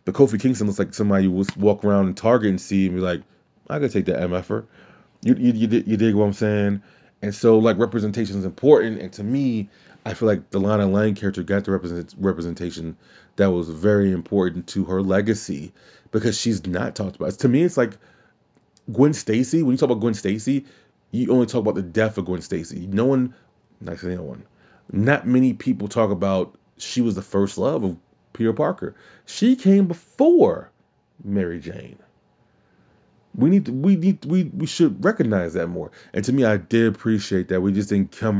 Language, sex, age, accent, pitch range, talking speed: English, male, 30-49, American, 95-120 Hz, 205 wpm